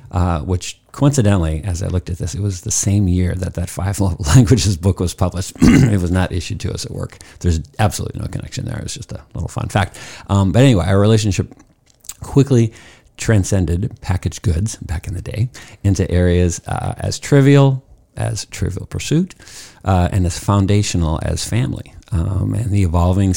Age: 50-69